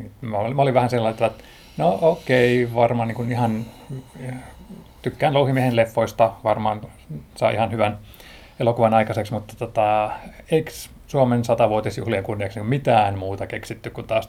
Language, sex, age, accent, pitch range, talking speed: Finnish, male, 30-49, native, 105-125 Hz, 145 wpm